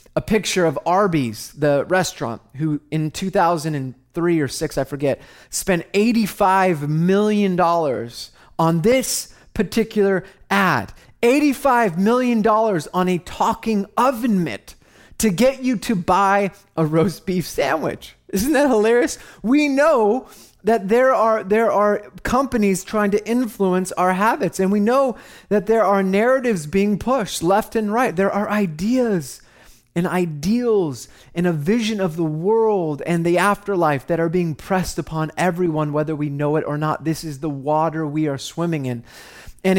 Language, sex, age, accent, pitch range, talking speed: English, male, 30-49, American, 150-205 Hz, 150 wpm